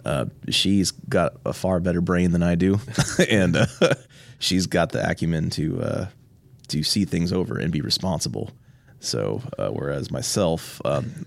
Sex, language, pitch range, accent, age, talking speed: male, English, 80-130 Hz, American, 30-49, 160 wpm